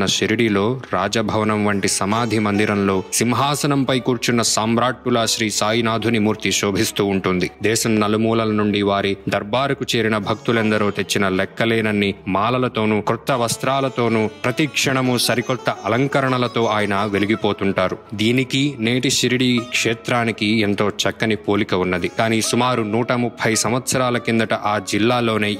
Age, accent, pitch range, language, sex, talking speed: 20-39, native, 105-125 Hz, Telugu, male, 100 wpm